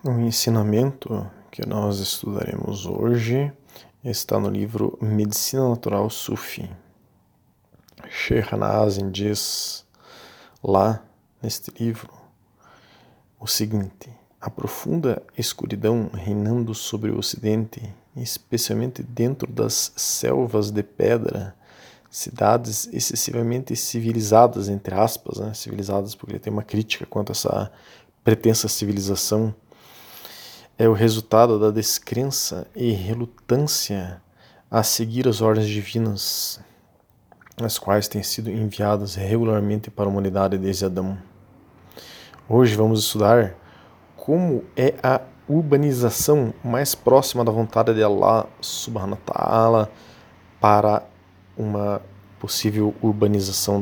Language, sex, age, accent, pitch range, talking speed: Portuguese, male, 20-39, Brazilian, 100-115 Hz, 105 wpm